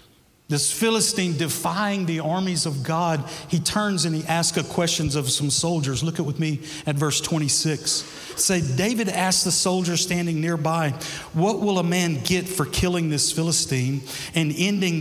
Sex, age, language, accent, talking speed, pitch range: male, 50-69, English, American, 170 wpm, 150-185 Hz